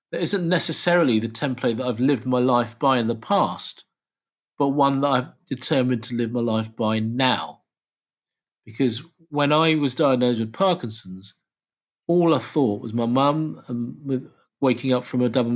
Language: English